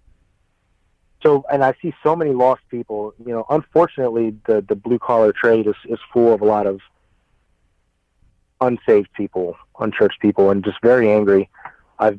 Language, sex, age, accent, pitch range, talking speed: English, male, 30-49, American, 95-120 Hz, 160 wpm